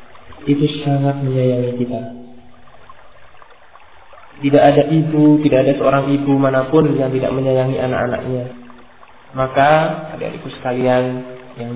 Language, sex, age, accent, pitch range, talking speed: English, male, 30-49, Indonesian, 115-140 Hz, 100 wpm